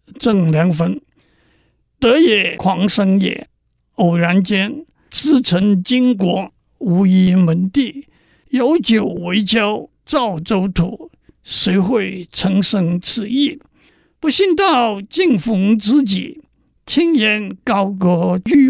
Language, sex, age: Chinese, male, 60-79